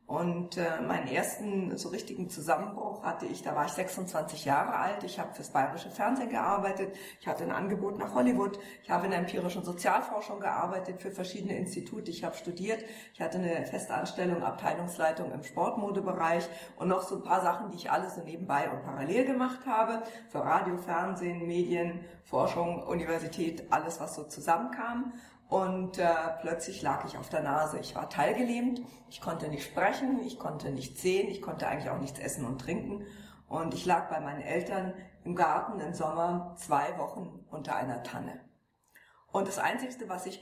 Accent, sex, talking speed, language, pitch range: German, female, 175 wpm, German, 165-205 Hz